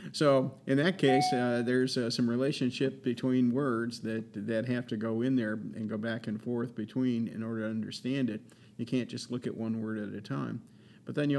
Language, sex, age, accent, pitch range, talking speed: English, male, 50-69, American, 110-125 Hz, 220 wpm